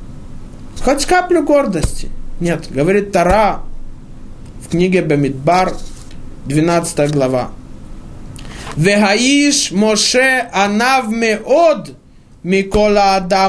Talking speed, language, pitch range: 55 wpm, Russian, 175-260 Hz